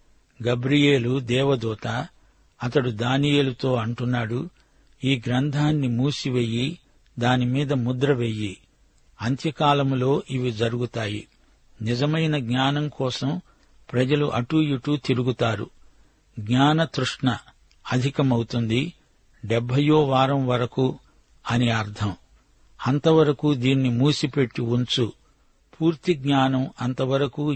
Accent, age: native, 60-79